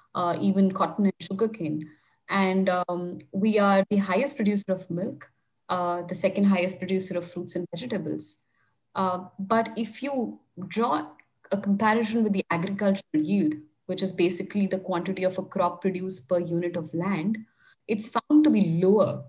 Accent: Indian